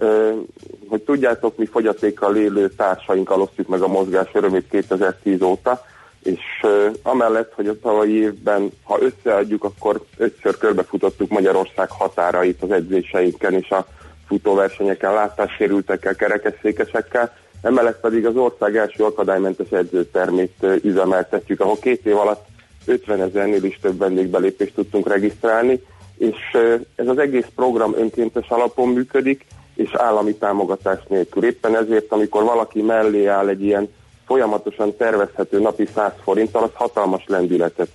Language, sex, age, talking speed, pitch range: Hungarian, male, 30-49, 125 wpm, 95-110 Hz